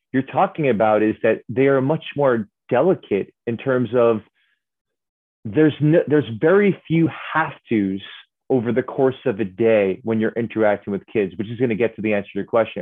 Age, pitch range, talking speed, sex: 30-49, 115-155 Hz, 195 wpm, male